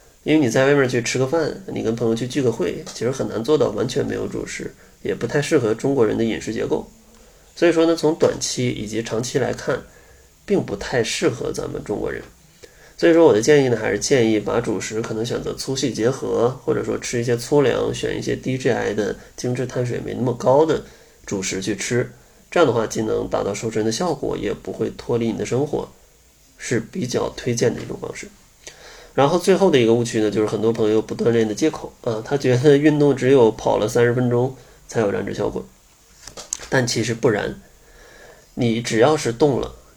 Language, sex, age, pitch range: Chinese, male, 20-39, 110-140 Hz